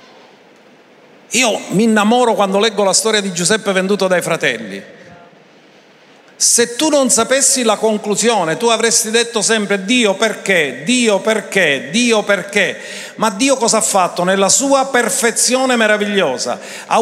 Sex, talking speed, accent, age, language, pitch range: male, 135 wpm, native, 50-69, Italian, 185-230 Hz